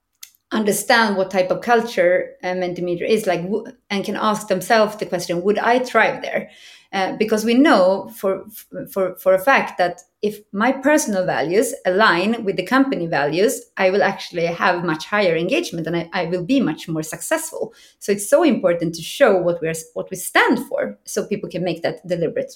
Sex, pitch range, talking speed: female, 180-235 Hz, 190 wpm